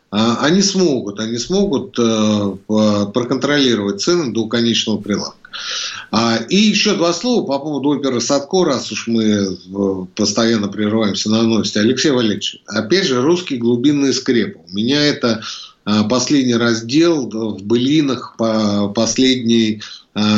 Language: Russian